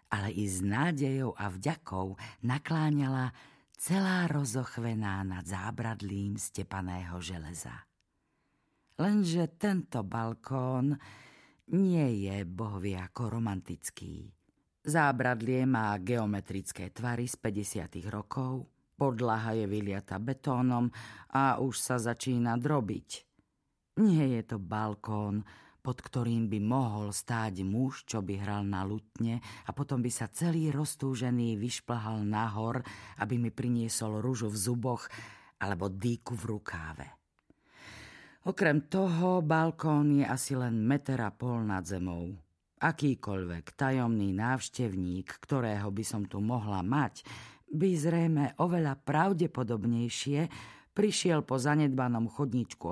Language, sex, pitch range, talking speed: Slovak, female, 105-135 Hz, 110 wpm